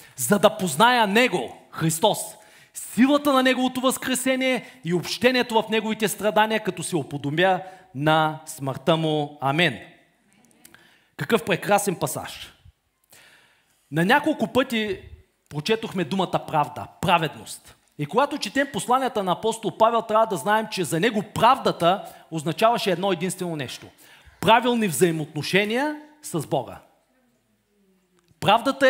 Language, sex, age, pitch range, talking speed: Bulgarian, male, 40-59, 175-230 Hz, 110 wpm